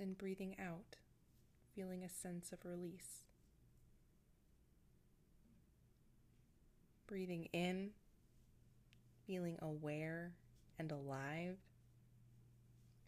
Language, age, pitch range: English, 20-39, 120-175 Hz